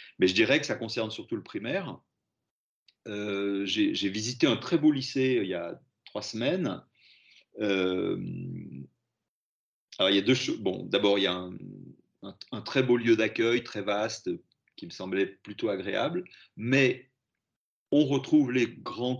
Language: French